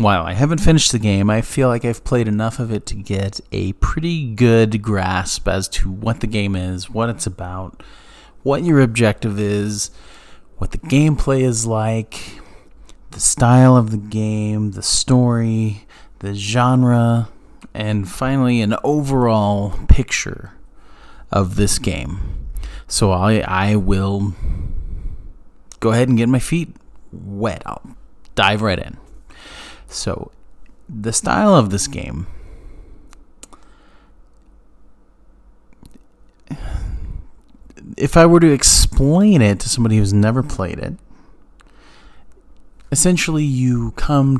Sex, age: male, 30-49